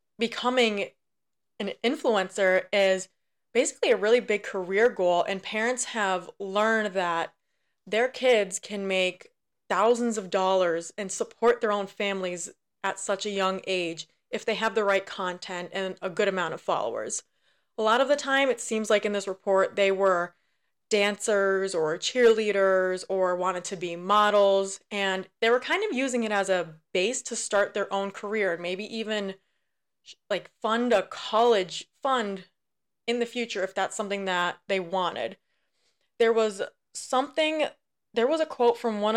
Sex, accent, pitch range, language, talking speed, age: female, American, 190-225 Hz, English, 160 wpm, 20-39